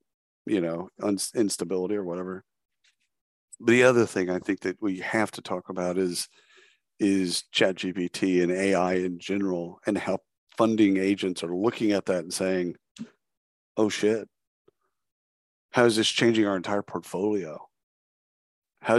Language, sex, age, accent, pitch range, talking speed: English, male, 50-69, American, 90-110 Hz, 140 wpm